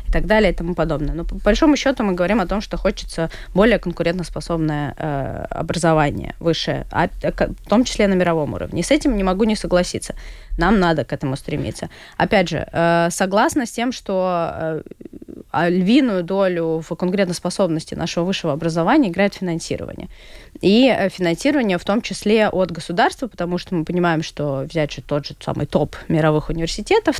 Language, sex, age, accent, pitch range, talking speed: Russian, female, 20-39, native, 155-190 Hz, 170 wpm